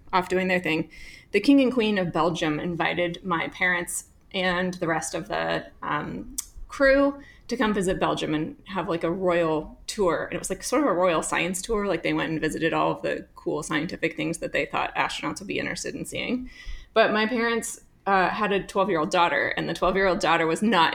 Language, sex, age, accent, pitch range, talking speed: English, female, 20-39, American, 170-225 Hz, 210 wpm